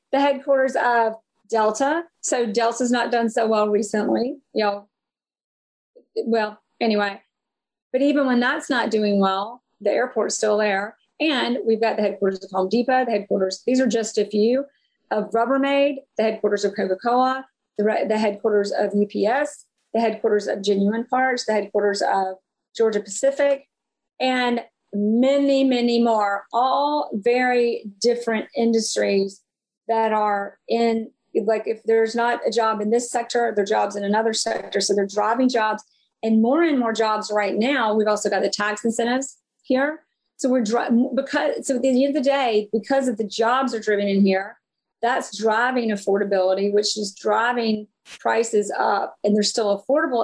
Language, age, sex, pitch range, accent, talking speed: English, 40-59, female, 210-250 Hz, American, 165 wpm